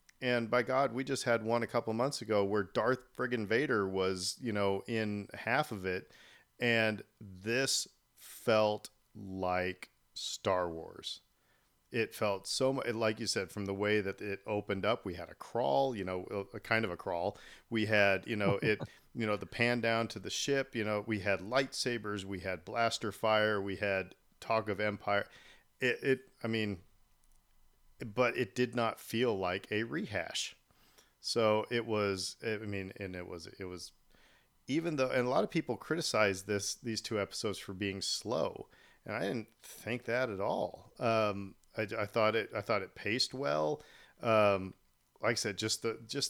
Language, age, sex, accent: English, 40-59, male, American